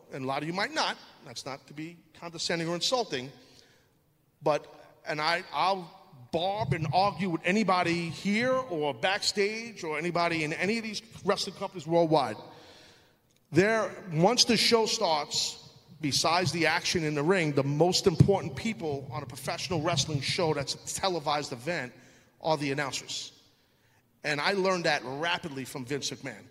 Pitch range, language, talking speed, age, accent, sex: 130-175 Hz, English, 155 wpm, 40-59, American, male